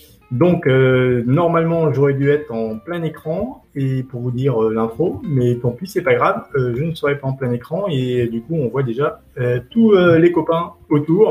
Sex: male